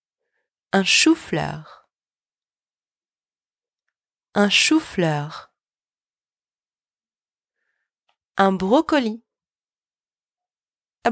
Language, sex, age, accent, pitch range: English, female, 30-49, French, 190-295 Hz